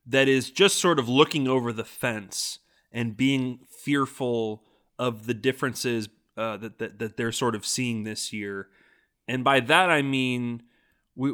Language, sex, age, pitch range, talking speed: English, male, 20-39, 110-130 Hz, 165 wpm